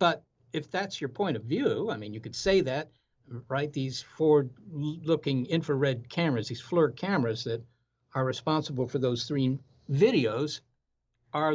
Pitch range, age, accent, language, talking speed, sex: 125-165 Hz, 60-79, American, English, 155 wpm, male